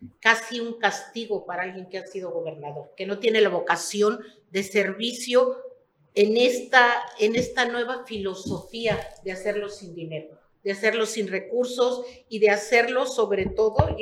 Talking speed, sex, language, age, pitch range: 155 wpm, female, Spanish, 50-69, 200-235 Hz